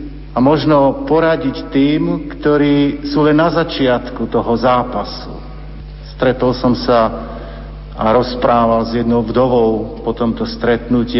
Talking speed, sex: 120 wpm, male